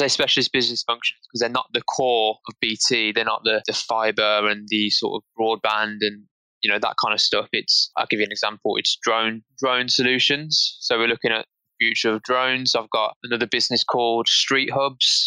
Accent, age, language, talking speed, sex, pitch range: British, 20-39, English, 200 wpm, male, 110-125 Hz